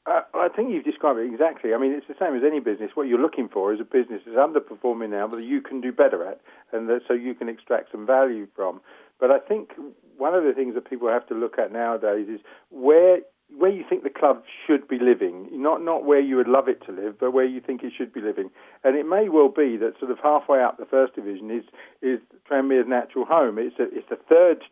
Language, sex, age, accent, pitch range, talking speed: English, male, 50-69, British, 120-160 Hz, 250 wpm